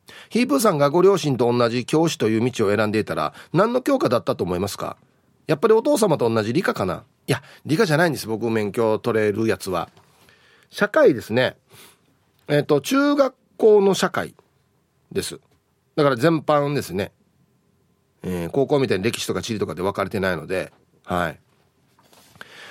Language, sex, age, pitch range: Japanese, male, 40-59, 125-200 Hz